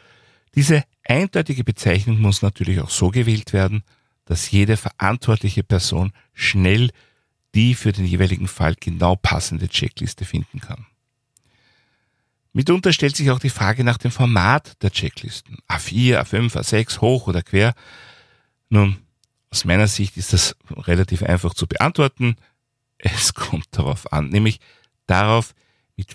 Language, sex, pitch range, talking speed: German, male, 95-125 Hz, 135 wpm